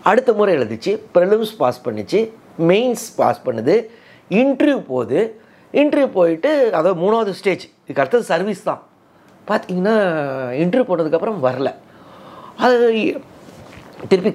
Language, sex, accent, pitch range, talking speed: Tamil, male, native, 160-235 Hz, 110 wpm